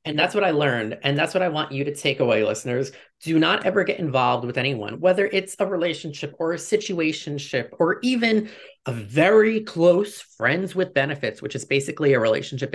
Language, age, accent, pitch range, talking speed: English, 30-49, American, 135-195 Hz, 200 wpm